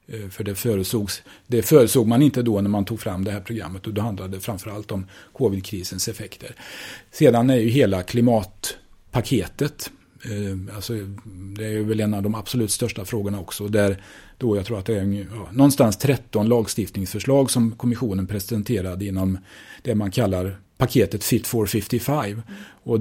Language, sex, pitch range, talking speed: Swedish, male, 100-120 Hz, 160 wpm